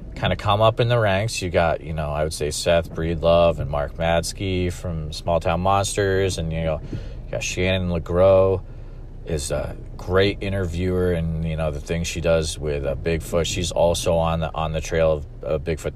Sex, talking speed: male, 210 wpm